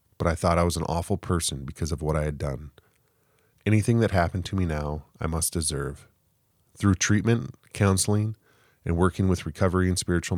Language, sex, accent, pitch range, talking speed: English, male, American, 80-95 Hz, 185 wpm